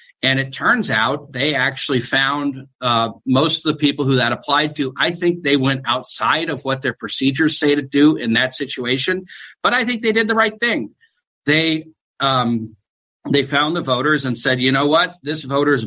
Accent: American